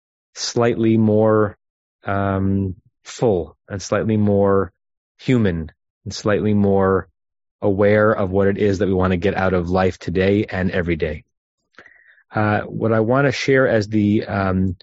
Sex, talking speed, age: male, 150 wpm, 30-49